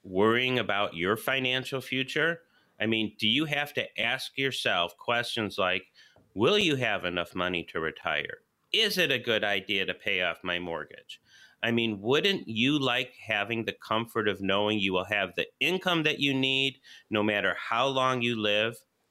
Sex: male